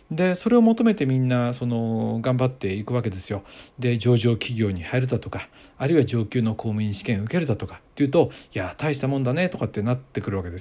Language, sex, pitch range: Japanese, male, 105-145 Hz